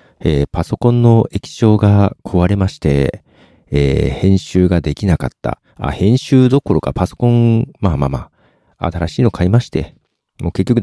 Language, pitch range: Japanese, 80-130 Hz